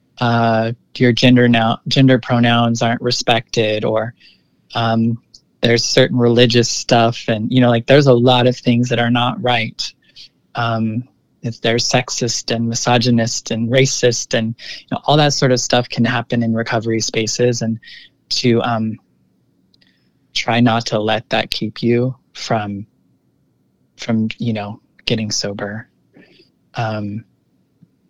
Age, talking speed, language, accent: 20-39, 135 wpm, English, American